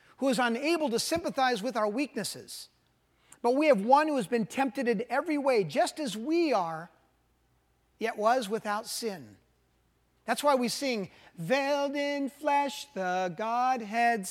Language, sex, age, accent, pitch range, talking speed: English, male, 40-59, American, 225-285 Hz, 150 wpm